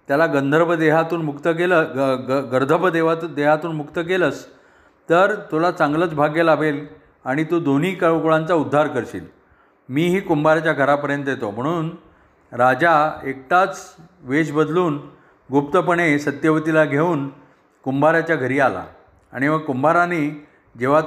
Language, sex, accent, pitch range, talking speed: Marathi, male, native, 140-165 Hz, 120 wpm